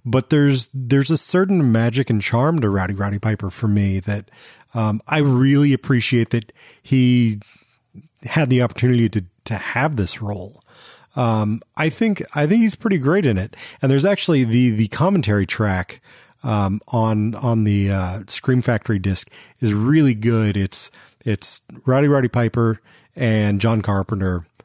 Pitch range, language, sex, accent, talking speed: 105-135 Hz, English, male, American, 160 wpm